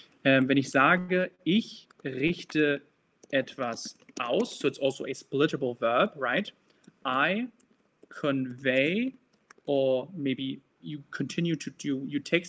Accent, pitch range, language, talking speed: German, 130-170 Hz, German, 120 wpm